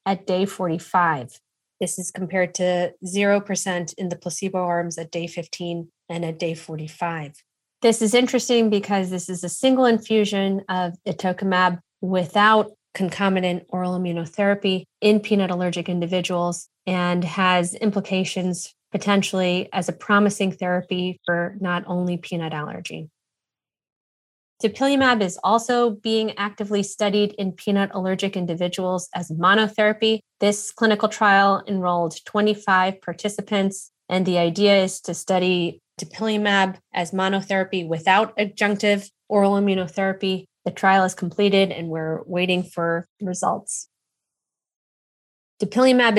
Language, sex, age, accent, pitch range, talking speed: English, female, 20-39, American, 180-205 Hz, 120 wpm